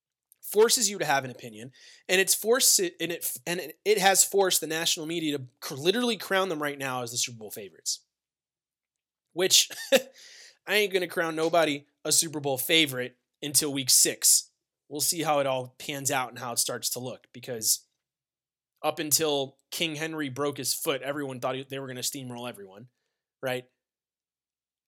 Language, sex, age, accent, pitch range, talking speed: English, male, 20-39, American, 125-165 Hz, 175 wpm